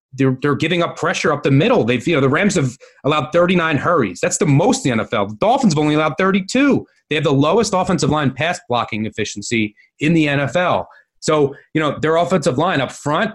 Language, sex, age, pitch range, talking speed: English, male, 30-49, 125-160 Hz, 220 wpm